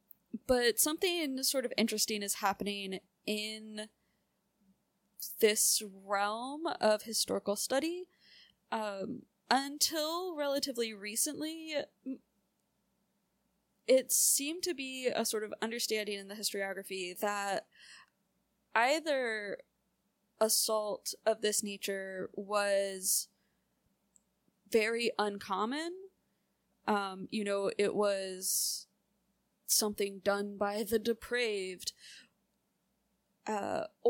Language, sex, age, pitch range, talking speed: English, female, 20-39, 200-235 Hz, 85 wpm